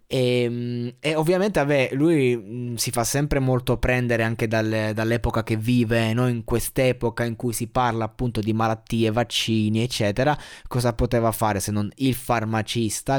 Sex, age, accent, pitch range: male, 20-39, native, 110-130 Hz